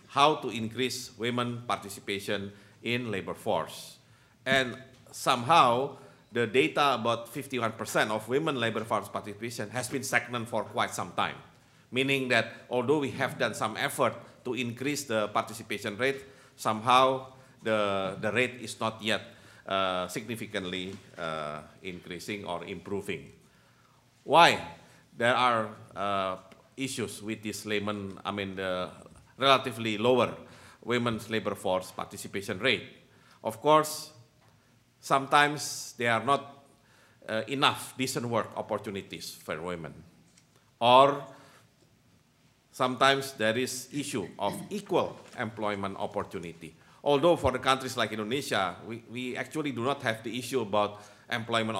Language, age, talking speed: English, 50-69, 125 wpm